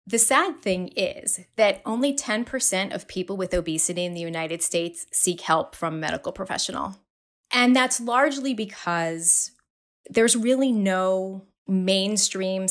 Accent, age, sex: American, 30-49, female